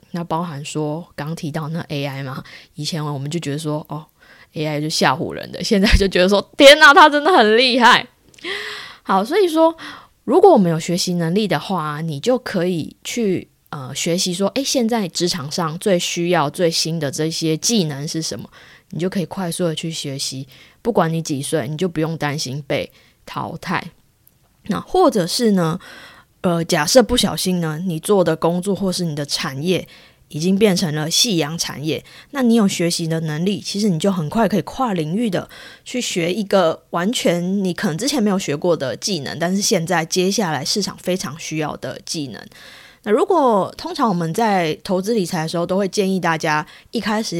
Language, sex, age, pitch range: Chinese, female, 20-39, 160-200 Hz